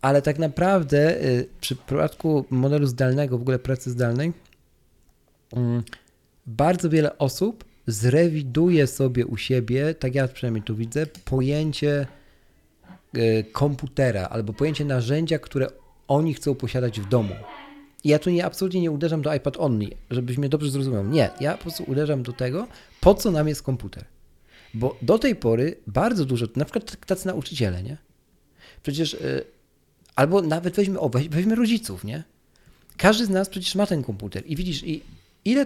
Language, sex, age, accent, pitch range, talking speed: Polish, male, 40-59, native, 125-165 Hz, 155 wpm